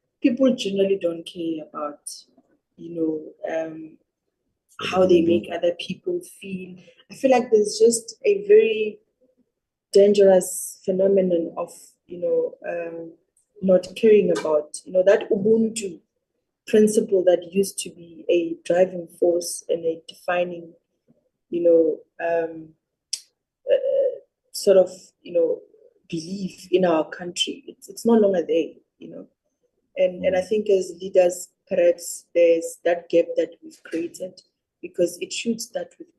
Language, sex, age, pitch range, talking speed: English, female, 20-39, 170-250 Hz, 135 wpm